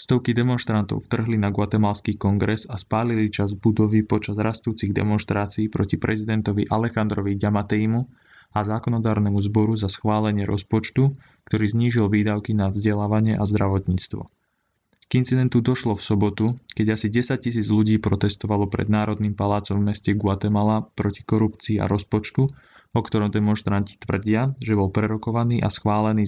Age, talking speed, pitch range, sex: 20-39, 135 wpm, 100-110 Hz, male